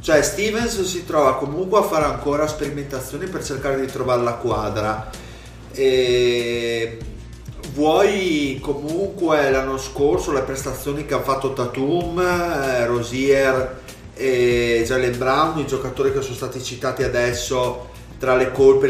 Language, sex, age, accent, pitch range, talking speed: Italian, male, 30-49, native, 125-145 Hz, 130 wpm